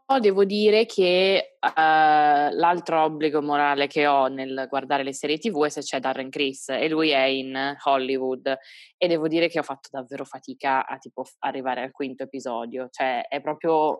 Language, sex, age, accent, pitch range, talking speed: Italian, female, 20-39, native, 145-210 Hz, 180 wpm